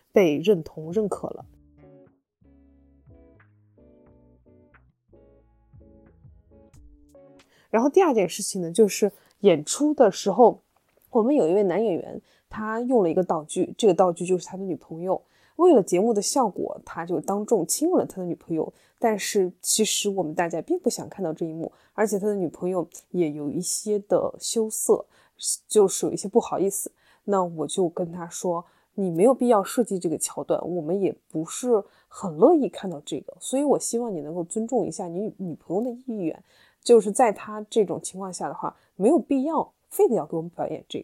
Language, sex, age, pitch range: Chinese, female, 20-39, 170-230 Hz